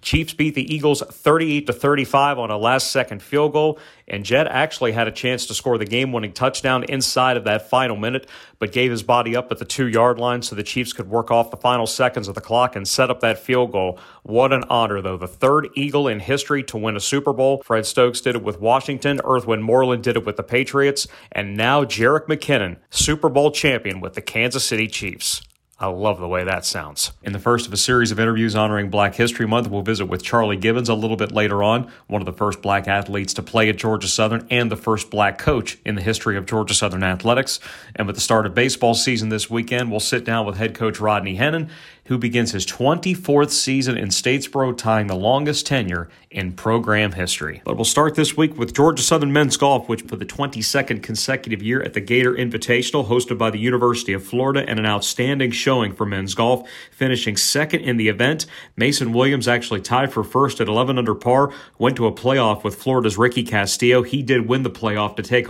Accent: American